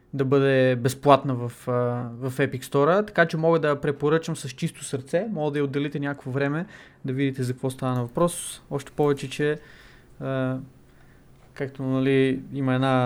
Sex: male